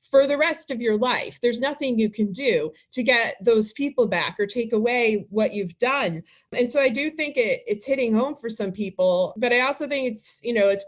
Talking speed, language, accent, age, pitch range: 230 wpm, English, American, 30-49, 190-240 Hz